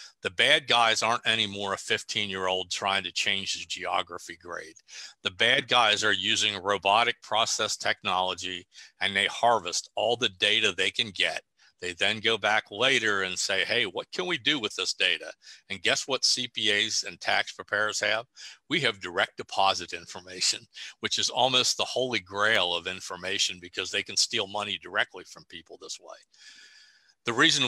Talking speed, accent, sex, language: 170 wpm, American, male, English